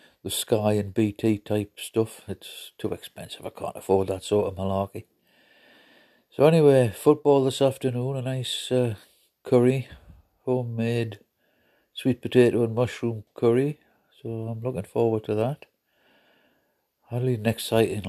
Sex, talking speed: male, 135 wpm